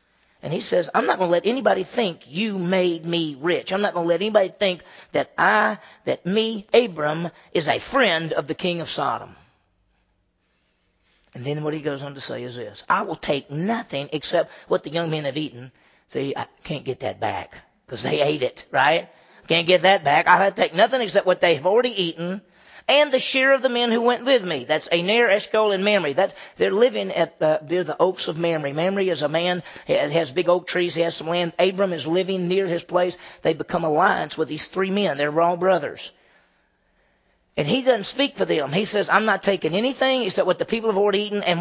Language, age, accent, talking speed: English, 40-59, American, 220 wpm